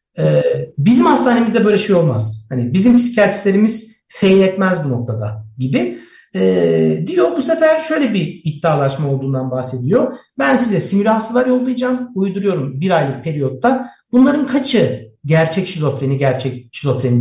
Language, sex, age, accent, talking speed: Turkish, male, 60-79, native, 125 wpm